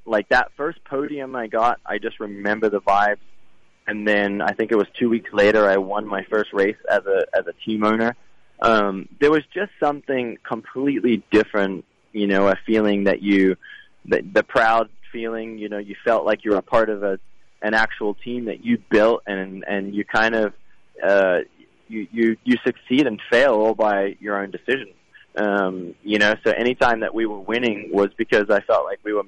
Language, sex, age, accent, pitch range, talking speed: English, male, 20-39, American, 100-115 Hz, 205 wpm